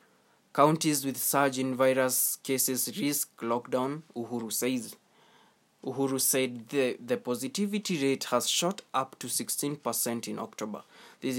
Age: 20-39